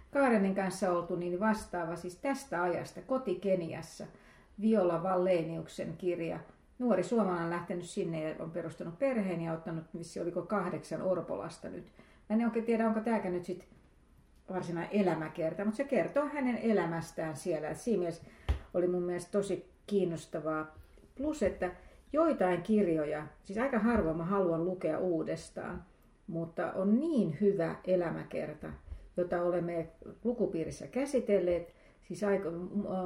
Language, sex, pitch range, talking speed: Finnish, female, 165-205 Hz, 130 wpm